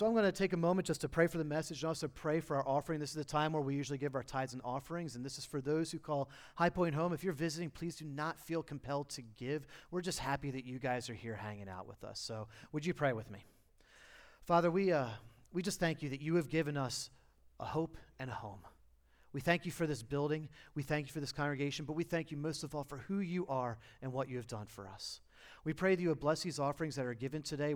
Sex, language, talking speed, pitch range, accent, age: male, English, 275 wpm, 125-160 Hz, American, 30-49